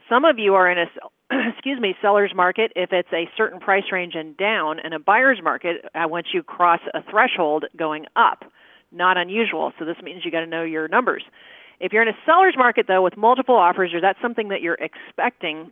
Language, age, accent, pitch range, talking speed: English, 40-59, American, 170-220 Hz, 215 wpm